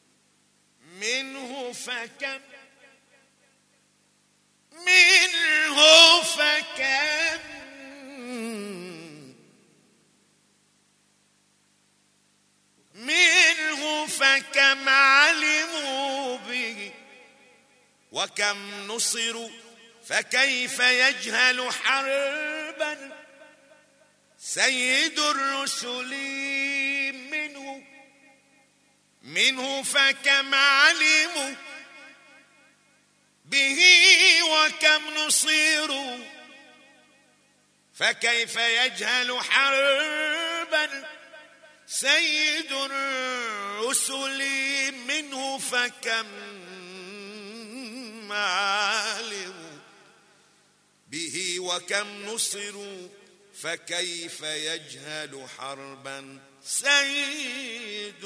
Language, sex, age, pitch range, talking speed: Arabic, male, 50-69, 225-300 Hz, 35 wpm